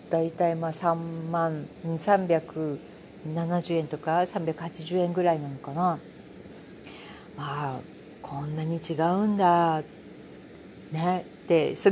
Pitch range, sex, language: 160-215 Hz, female, Japanese